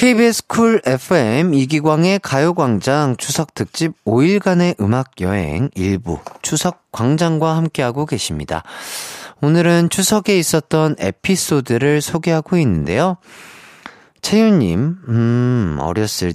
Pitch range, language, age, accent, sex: 110-165 Hz, Korean, 40-59, native, male